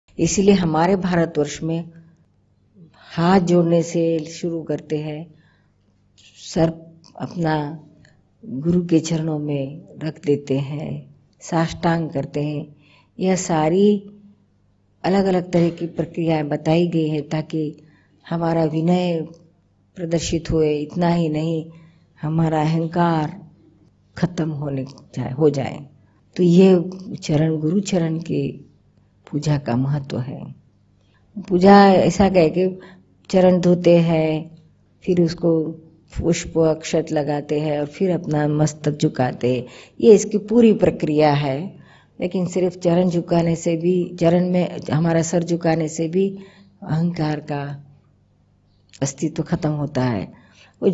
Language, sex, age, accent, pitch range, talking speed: Gujarati, female, 50-69, native, 150-175 Hz, 120 wpm